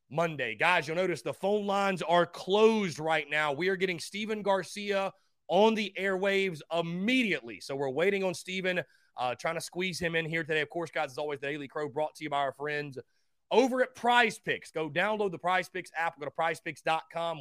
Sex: male